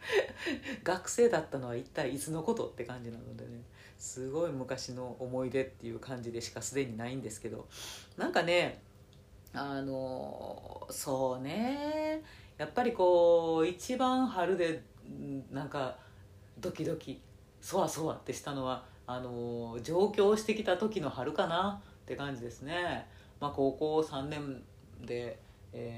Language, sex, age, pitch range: Japanese, female, 40-59, 120-150 Hz